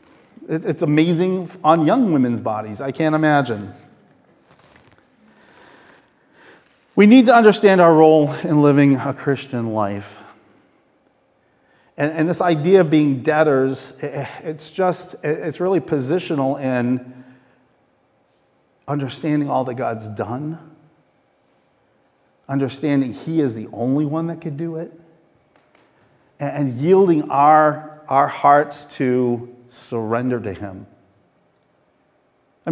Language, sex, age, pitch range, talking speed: English, male, 40-59, 135-180 Hz, 110 wpm